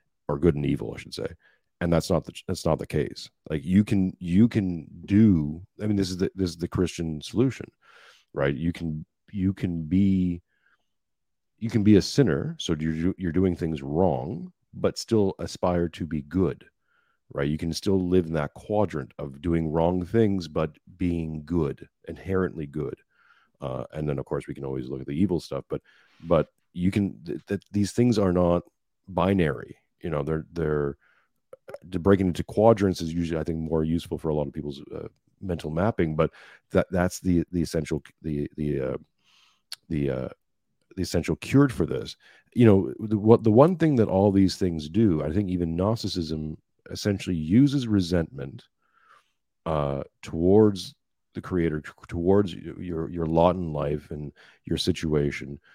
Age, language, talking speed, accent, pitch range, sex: 40-59, English, 175 wpm, American, 80-100 Hz, male